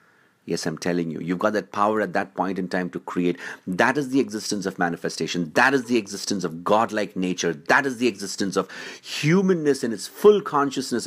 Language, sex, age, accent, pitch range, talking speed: English, male, 50-69, Indian, 90-130 Hz, 205 wpm